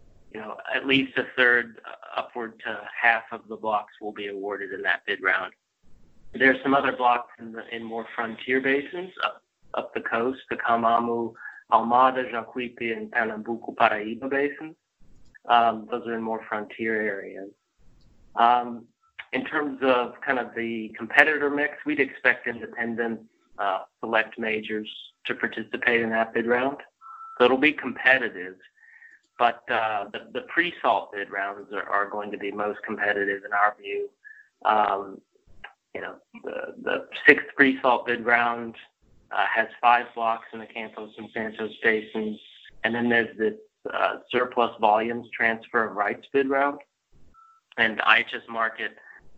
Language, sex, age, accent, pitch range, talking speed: English, male, 30-49, American, 110-130 Hz, 150 wpm